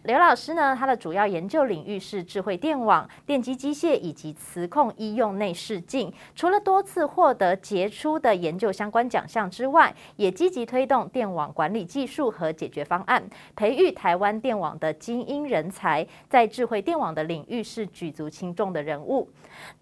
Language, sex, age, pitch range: Chinese, female, 20-39, 170-255 Hz